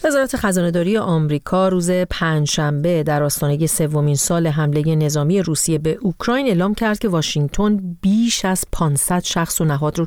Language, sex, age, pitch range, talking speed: Persian, female, 40-59, 155-200 Hz, 160 wpm